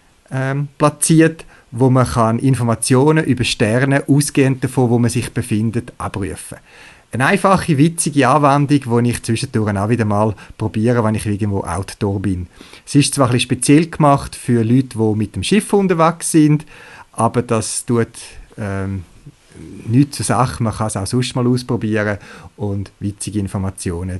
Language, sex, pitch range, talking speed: German, male, 105-140 Hz, 155 wpm